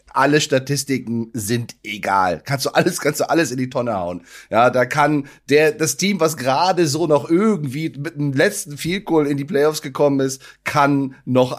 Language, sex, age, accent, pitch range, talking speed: German, male, 30-49, German, 115-140 Hz, 190 wpm